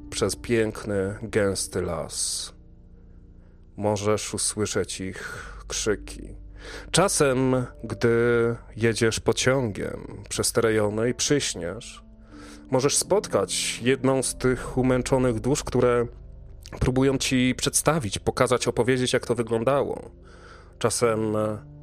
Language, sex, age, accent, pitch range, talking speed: Polish, male, 30-49, native, 95-120 Hz, 90 wpm